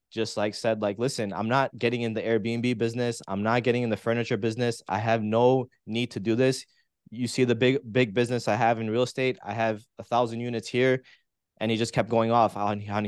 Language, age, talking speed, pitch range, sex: English, 20-39, 230 wpm, 105-125 Hz, male